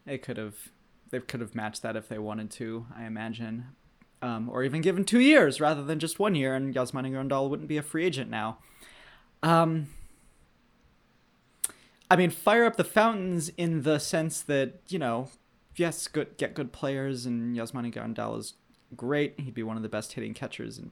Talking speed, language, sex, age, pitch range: 190 wpm, English, male, 20-39, 120-165 Hz